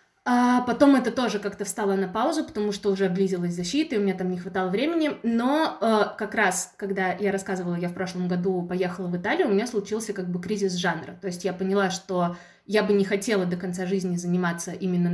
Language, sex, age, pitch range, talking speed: Russian, female, 20-39, 180-210 Hz, 215 wpm